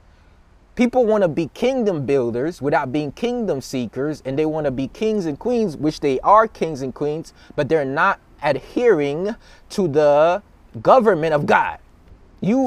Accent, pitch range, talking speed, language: American, 155-220 Hz, 160 wpm, English